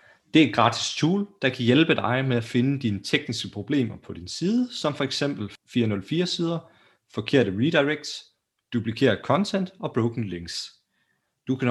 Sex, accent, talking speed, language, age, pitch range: male, native, 160 wpm, Danish, 30-49, 110-140 Hz